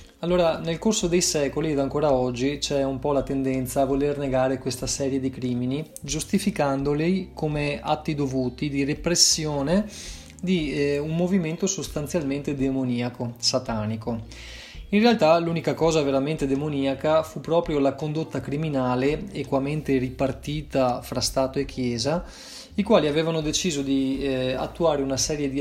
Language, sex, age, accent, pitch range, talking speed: Italian, male, 30-49, native, 135-160 Hz, 140 wpm